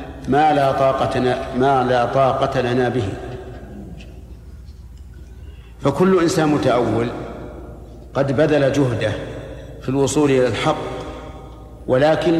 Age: 50-69